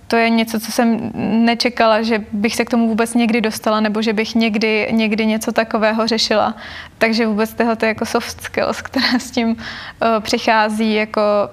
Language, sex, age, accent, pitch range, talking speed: Czech, female, 20-39, native, 215-230 Hz, 175 wpm